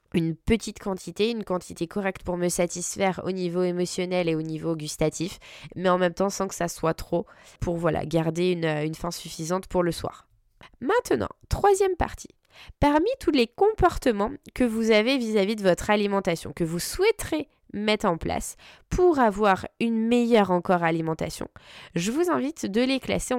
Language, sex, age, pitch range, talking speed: French, female, 20-39, 170-245 Hz, 170 wpm